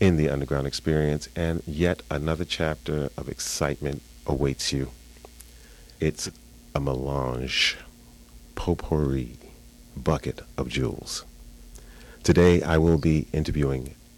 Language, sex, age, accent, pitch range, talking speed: English, male, 40-59, American, 65-85 Hz, 100 wpm